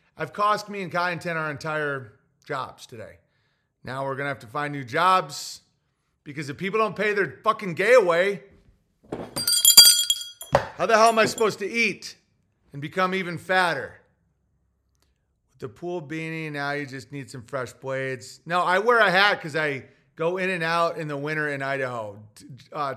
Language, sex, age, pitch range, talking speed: English, male, 30-49, 125-170 Hz, 180 wpm